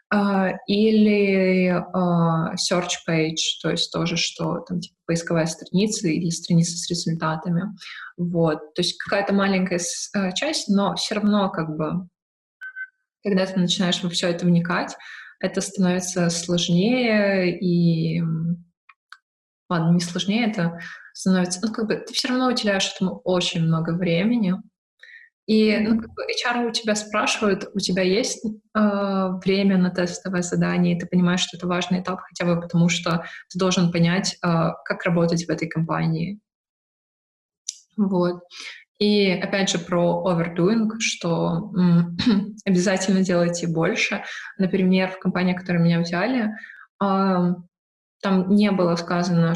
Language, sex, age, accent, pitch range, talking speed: Russian, female, 20-39, native, 175-200 Hz, 135 wpm